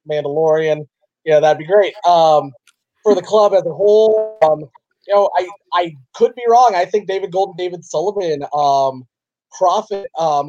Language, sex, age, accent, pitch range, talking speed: English, male, 30-49, American, 135-155 Hz, 165 wpm